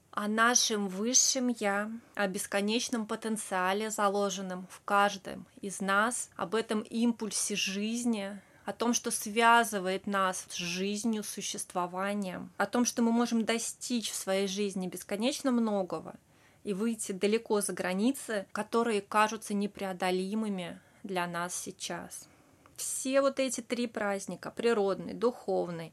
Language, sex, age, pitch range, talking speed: Russian, female, 20-39, 190-230 Hz, 125 wpm